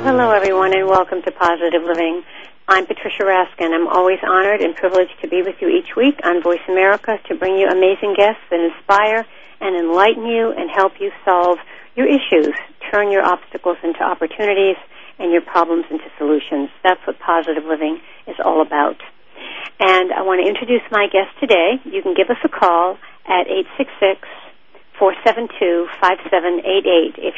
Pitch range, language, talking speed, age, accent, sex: 170-215 Hz, English, 160 wpm, 50-69, American, female